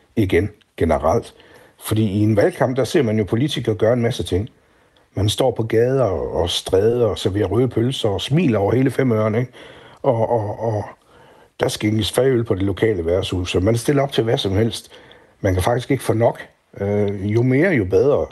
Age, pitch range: 60-79, 100-125 Hz